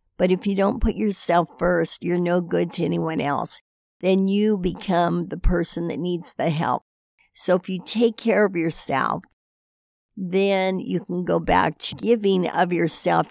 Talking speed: 170 wpm